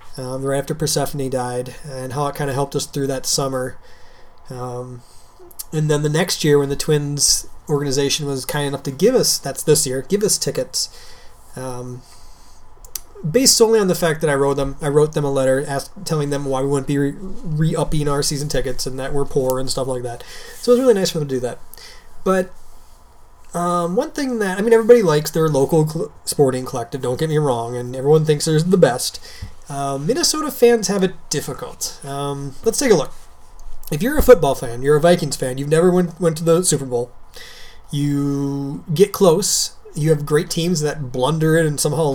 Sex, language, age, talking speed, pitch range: male, English, 20-39, 210 wpm, 135-165 Hz